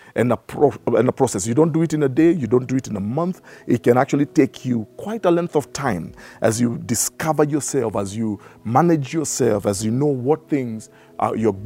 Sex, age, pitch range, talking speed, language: male, 50-69, 120-155 Hz, 215 wpm, English